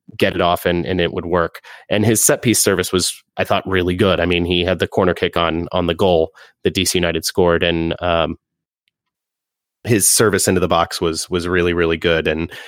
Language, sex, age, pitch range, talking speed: English, male, 30-49, 85-100 Hz, 220 wpm